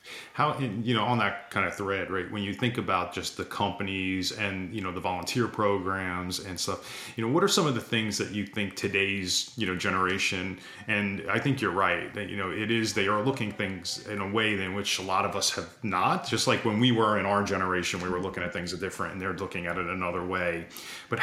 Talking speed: 245 wpm